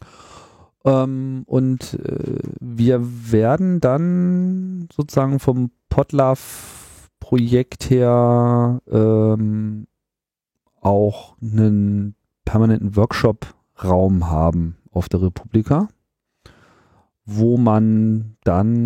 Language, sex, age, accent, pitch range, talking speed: German, male, 40-59, German, 100-125 Hz, 65 wpm